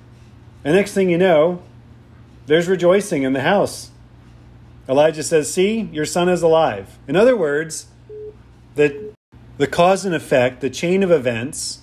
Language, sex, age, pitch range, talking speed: English, male, 40-59, 115-150 Hz, 145 wpm